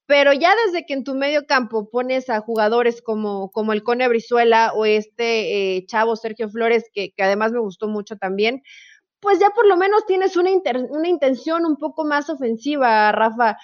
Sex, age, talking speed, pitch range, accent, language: female, 30-49, 195 wpm, 215-275 Hz, Mexican, Spanish